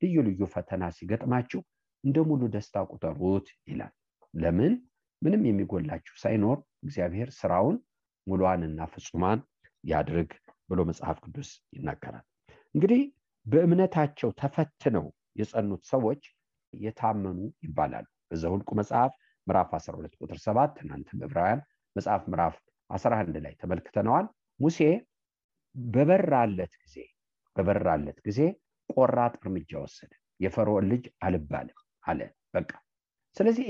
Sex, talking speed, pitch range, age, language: male, 95 wpm, 100-150 Hz, 50-69, English